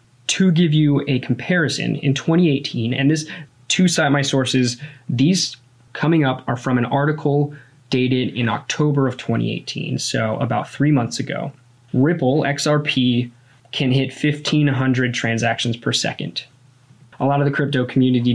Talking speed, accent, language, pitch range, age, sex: 145 wpm, American, English, 120-145 Hz, 20-39, male